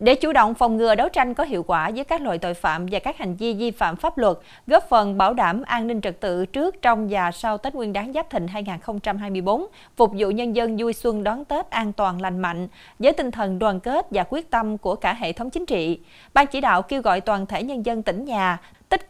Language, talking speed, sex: Vietnamese, 250 wpm, female